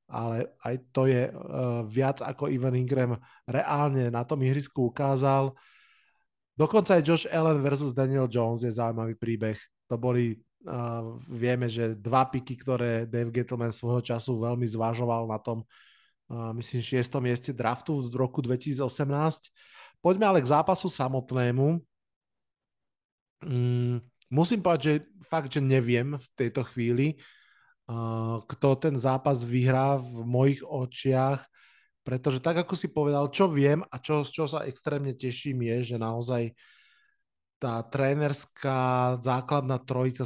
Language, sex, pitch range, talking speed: Slovak, male, 120-140 Hz, 135 wpm